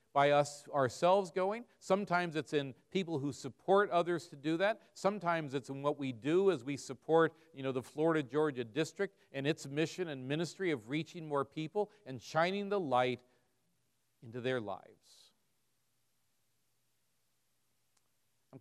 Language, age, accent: English, 40-59, American